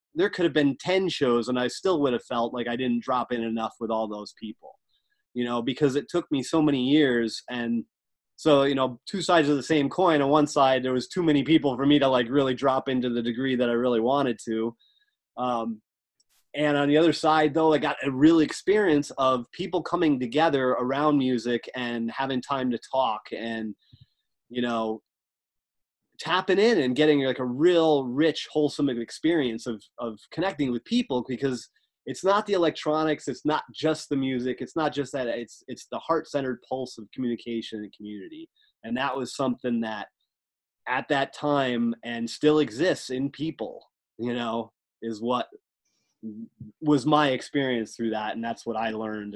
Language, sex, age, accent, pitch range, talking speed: English, male, 30-49, American, 115-150 Hz, 190 wpm